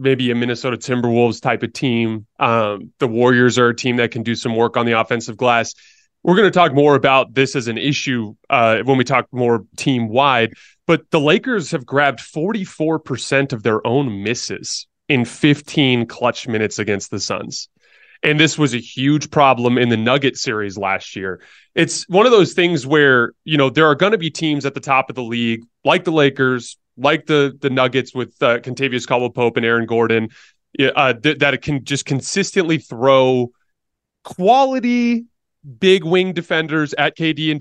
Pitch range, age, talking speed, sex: 120-155 Hz, 30-49, 190 wpm, male